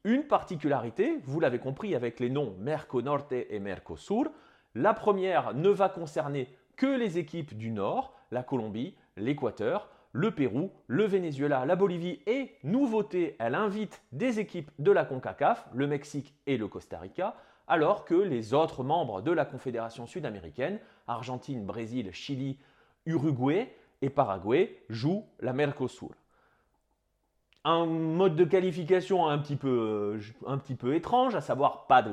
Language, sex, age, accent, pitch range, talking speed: French, male, 30-49, French, 130-190 Hz, 145 wpm